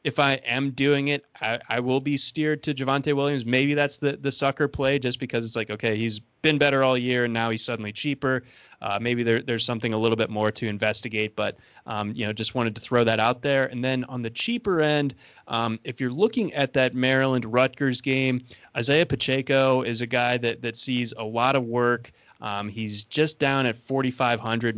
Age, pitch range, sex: 20-39, 115-130 Hz, male